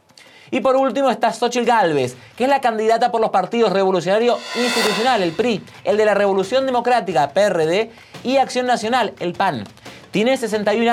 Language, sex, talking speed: Spanish, male, 165 wpm